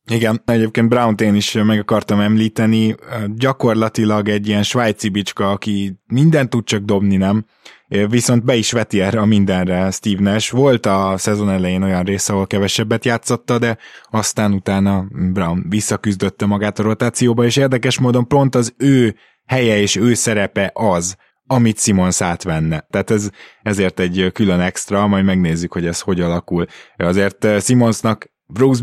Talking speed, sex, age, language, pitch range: 155 wpm, male, 20-39, Hungarian, 100-115 Hz